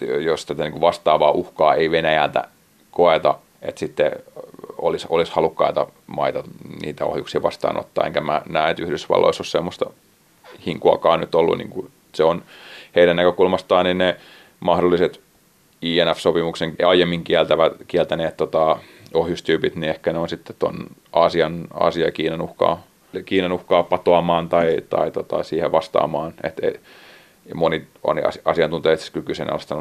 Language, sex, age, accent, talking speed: Finnish, male, 30-49, native, 125 wpm